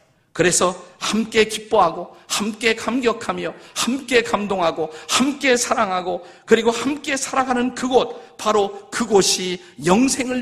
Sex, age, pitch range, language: male, 50-69, 155-220 Hz, Korean